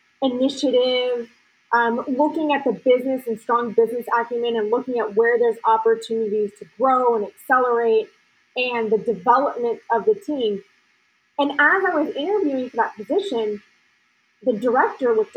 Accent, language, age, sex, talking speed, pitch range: American, English, 20-39, female, 145 wpm, 230-320 Hz